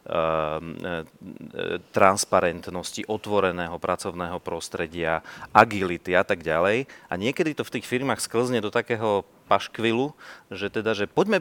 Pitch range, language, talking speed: 95-120 Hz, Slovak, 115 wpm